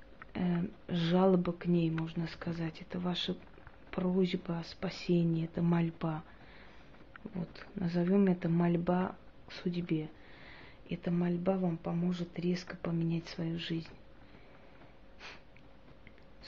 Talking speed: 95 wpm